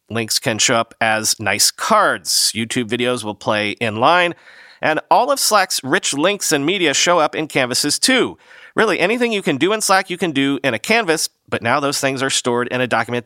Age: 40-59